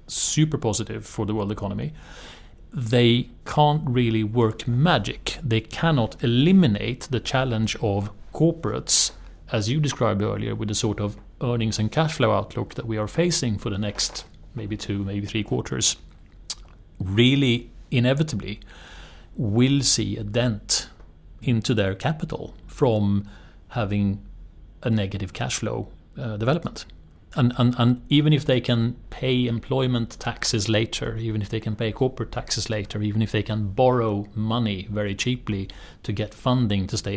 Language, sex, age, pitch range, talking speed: Swedish, male, 30-49, 100-125 Hz, 150 wpm